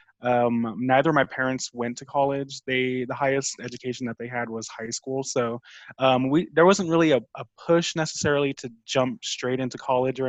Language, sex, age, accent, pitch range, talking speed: English, male, 20-39, American, 120-140 Hz, 200 wpm